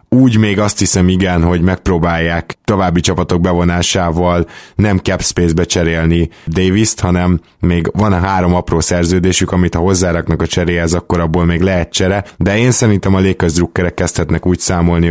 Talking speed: 160 wpm